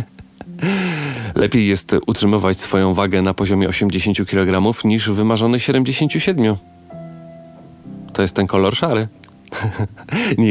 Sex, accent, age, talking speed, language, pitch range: male, native, 30-49, 105 wpm, Polish, 95-115 Hz